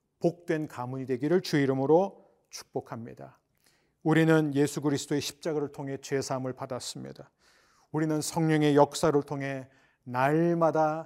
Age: 40-59